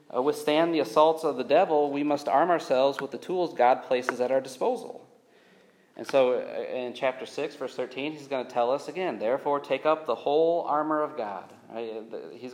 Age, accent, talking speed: 30-49, American, 190 wpm